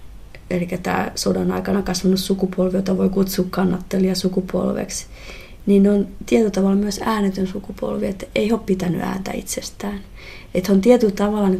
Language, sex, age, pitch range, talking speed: Finnish, female, 30-49, 175-195 Hz, 145 wpm